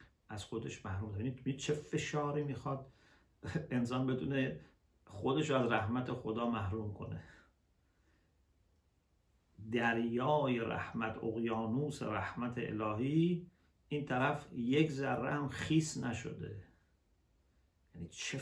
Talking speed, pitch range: 100 wpm, 95-130 Hz